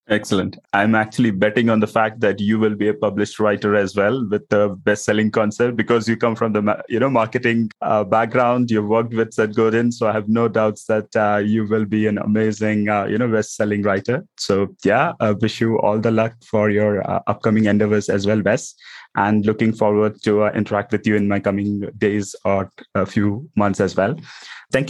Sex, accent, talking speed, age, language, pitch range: male, Indian, 210 wpm, 20-39, English, 105-115 Hz